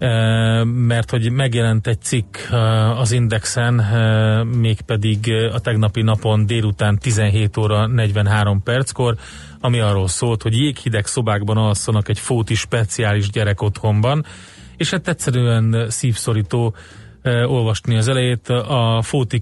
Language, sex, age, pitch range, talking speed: Hungarian, male, 30-49, 110-125 Hz, 115 wpm